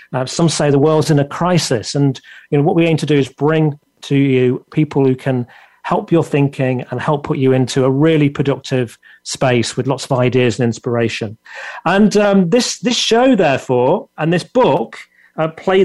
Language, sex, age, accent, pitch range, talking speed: English, male, 40-59, British, 140-175 Hz, 195 wpm